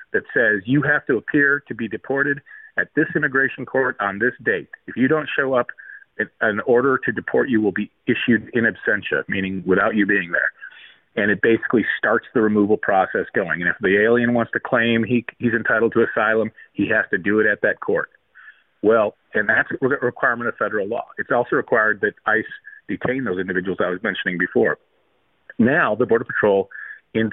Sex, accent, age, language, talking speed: male, American, 40-59, English, 200 wpm